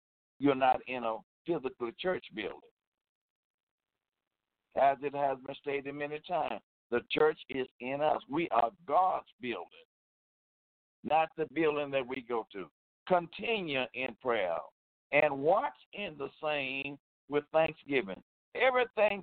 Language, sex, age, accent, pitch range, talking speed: English, male, 60-79, American, 130-180 Hz, 130 wpm